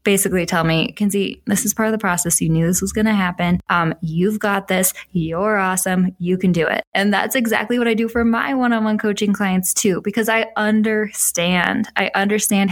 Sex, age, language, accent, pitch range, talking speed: female, 10-29, English, American, 185-225 Hz, 210 wpm